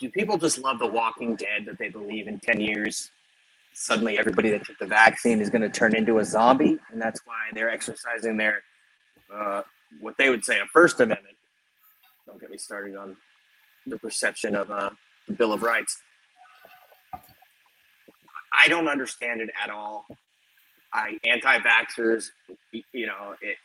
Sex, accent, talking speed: male, American, 160 wpm